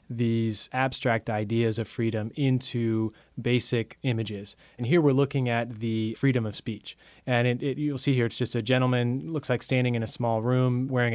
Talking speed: 190 wpm